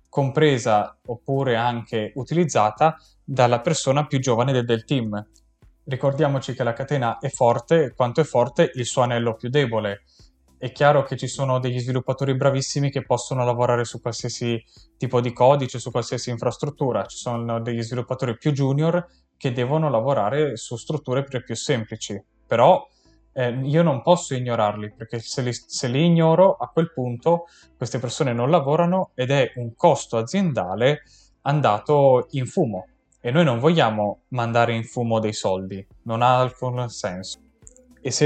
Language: Italian